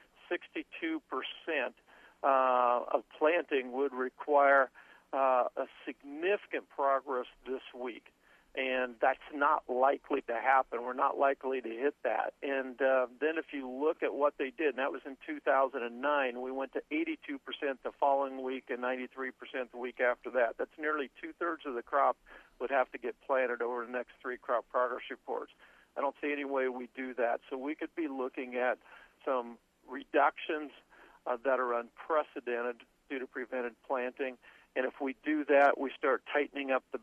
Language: English